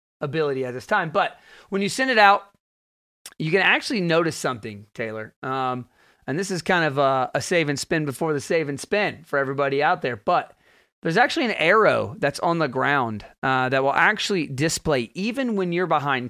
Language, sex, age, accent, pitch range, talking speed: English, male, 30-49, American, 135-175 Hz, 200 wpm